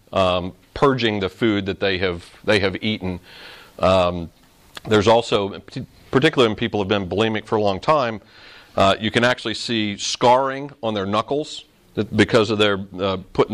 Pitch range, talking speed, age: 95-120 Hz, 165 wpm, 40-59